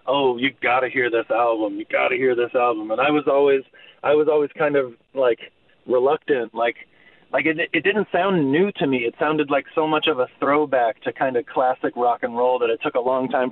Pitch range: 115-150 Hz